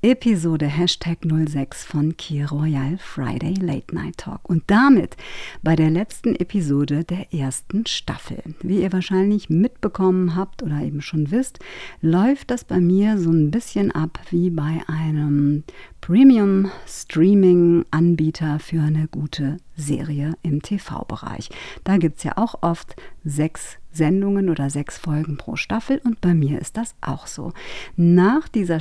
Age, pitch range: 50-69, 155-195 Hz